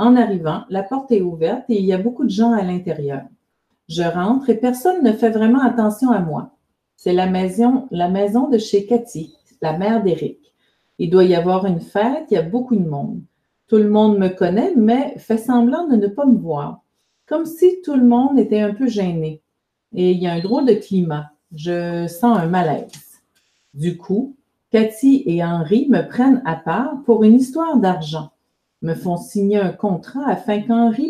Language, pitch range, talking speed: French, 180-240 Hz, 195 wpm